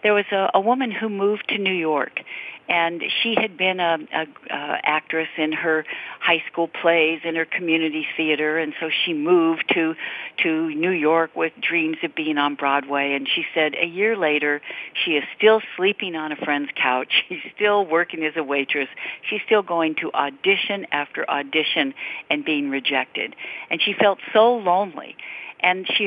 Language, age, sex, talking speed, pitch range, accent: English, 60-79, female, 180 wpm, 160-210 Hz, American